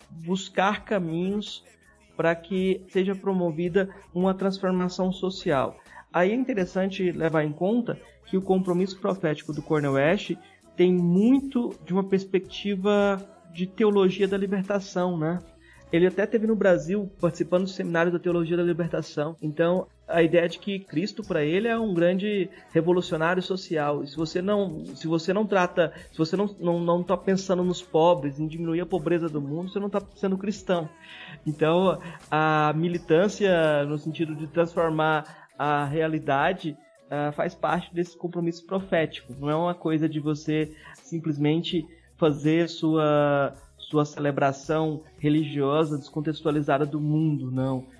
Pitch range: 155-190 Hz